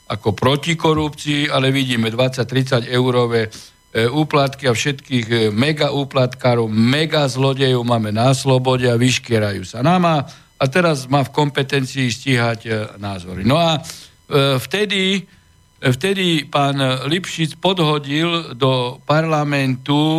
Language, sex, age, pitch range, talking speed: Slovak, male, 60-79, 125-155 Hz, 110 wpm